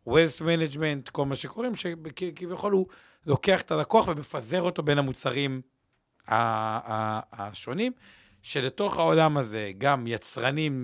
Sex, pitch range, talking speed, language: male, 120-180 Hz, 135 wpm, Hebrew